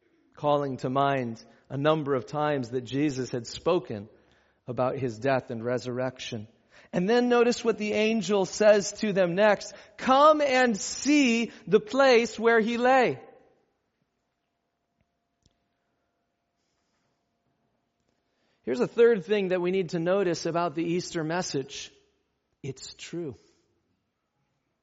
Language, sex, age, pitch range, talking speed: English, male, 40-59, 150-210 Hz, 120 wpm